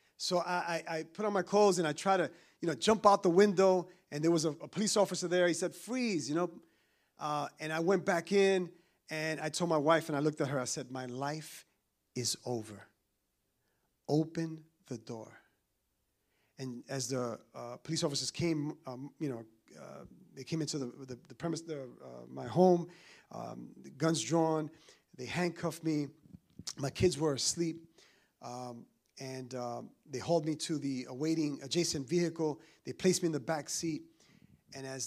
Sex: male